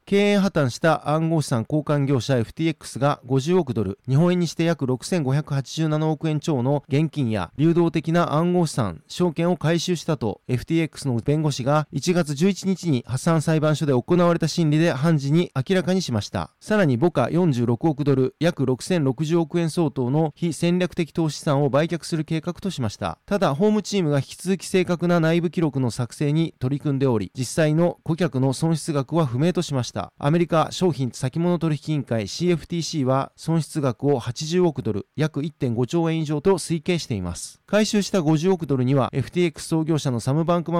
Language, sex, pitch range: Japanese, male, 135-170 Hz